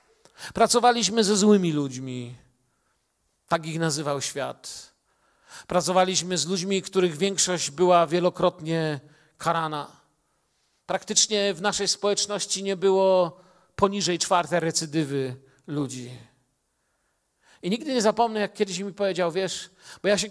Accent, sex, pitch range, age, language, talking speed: native, male, 140-205 Hz, 50-69, Polish, 110 wpm